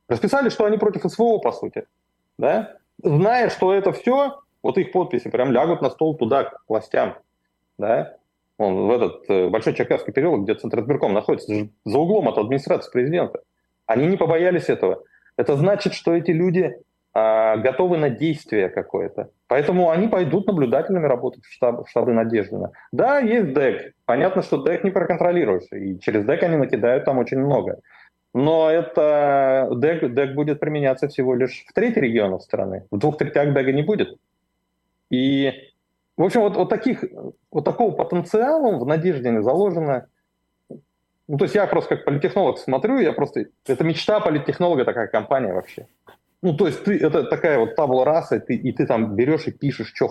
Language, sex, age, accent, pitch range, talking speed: Russian, male, 30-49, native, 120-185 Hz, 160 wpm